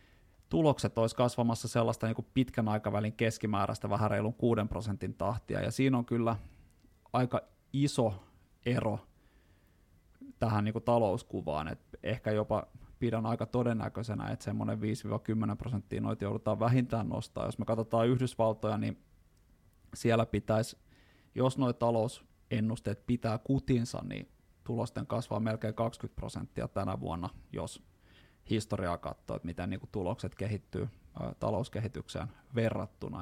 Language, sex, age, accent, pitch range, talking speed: Finnish, male, 30-49, native, 105-120 Hz, 120 wpm